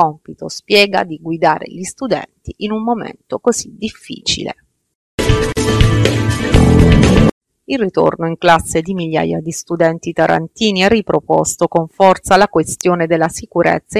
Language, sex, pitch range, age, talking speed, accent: Italian, female, 155-190 Hz, 30-49, 120 wpm, native